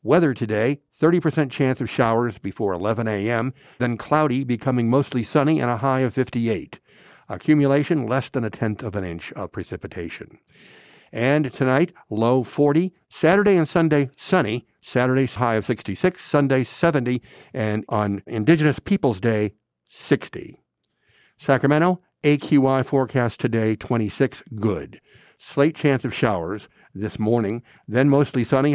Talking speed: 135 wpm